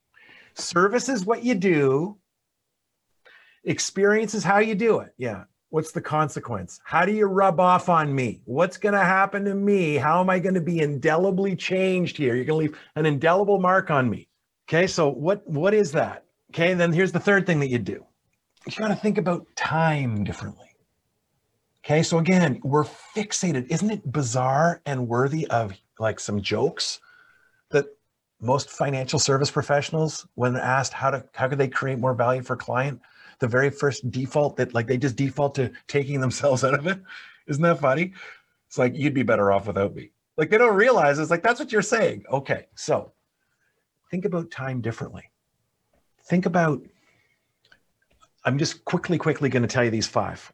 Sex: male